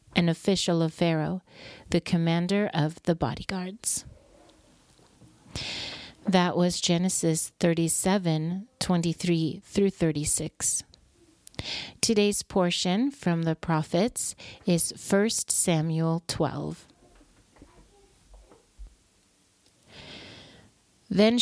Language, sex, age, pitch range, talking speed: English, female, 40-59, 165-200 Hz, 75 wpm